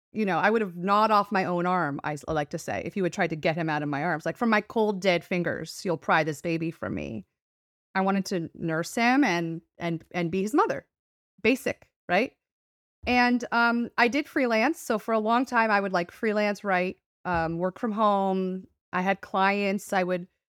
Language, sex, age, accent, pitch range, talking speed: English, female, 30-49, American, 185-220 Hz, 215 wpm